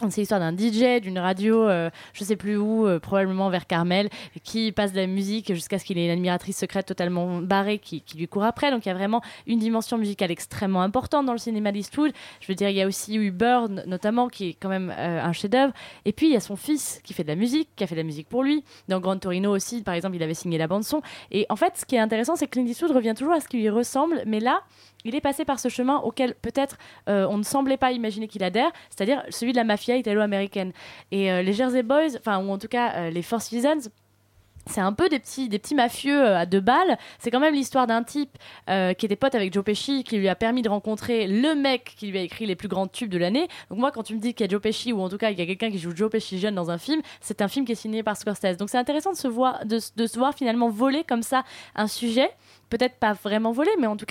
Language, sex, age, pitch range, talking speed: French, female, 20-39, 195-255 Hz, 280 wpm